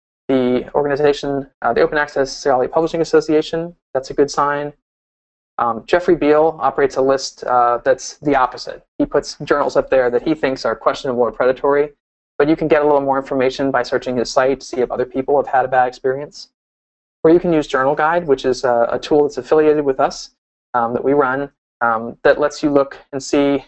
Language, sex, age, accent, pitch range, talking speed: English, male, 20-39, American, 125-150 Hz, 210 wpm